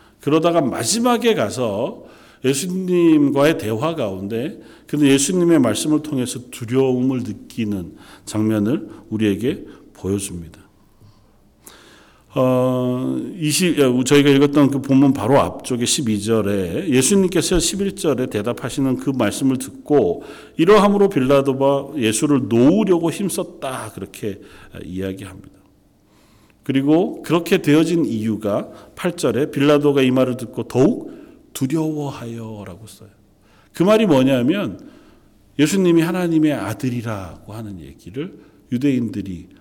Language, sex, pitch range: Korean, male, 110-165 Hz